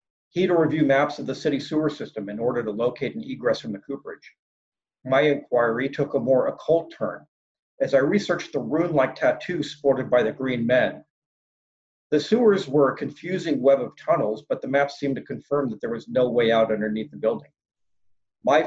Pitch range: 125-155 Hz